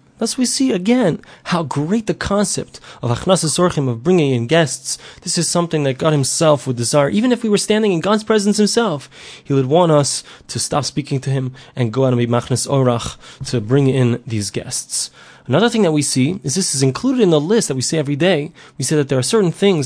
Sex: male